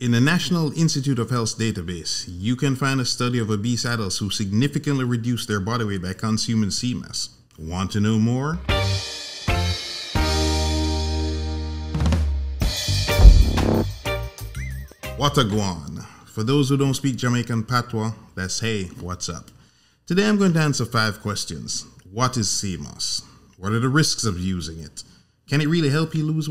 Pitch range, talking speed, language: 100-135 Hz, 145 wpm, English